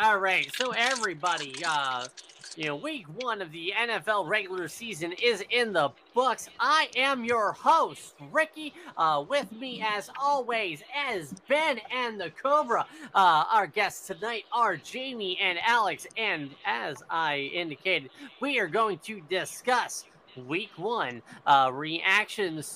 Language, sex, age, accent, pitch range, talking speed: English, male, 20-39, American, 165-230 Hz, 140 wpm